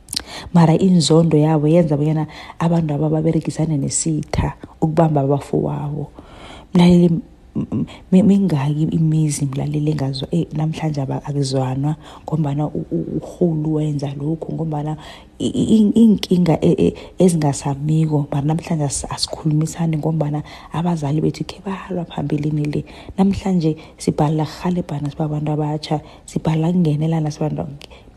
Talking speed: 110 wpm